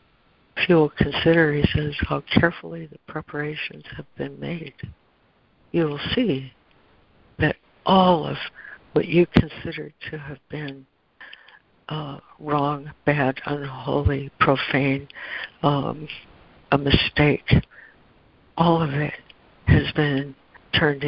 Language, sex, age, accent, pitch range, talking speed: English, female, 60-79, American, 140-155 Hz, 110 wpm